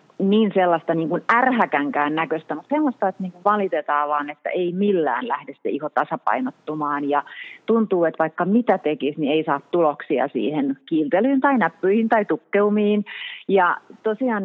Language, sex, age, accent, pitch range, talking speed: Finnish, female, 30-49, native, 150-210 Hz, 145 wpm